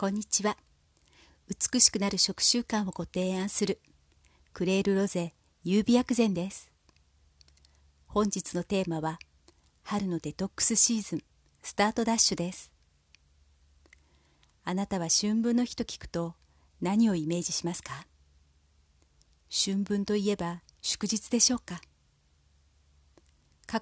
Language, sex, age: Japanese, female, 40-59